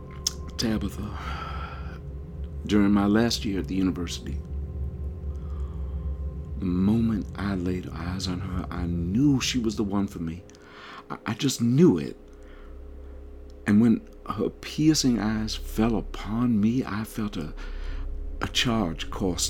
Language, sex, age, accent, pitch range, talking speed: English, male, 50-69, American, 70-105 Hz, 130 wpm